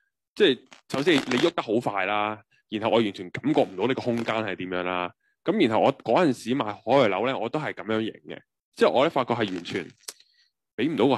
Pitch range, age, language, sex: 100-130 Hz, 20-39, Chinese, male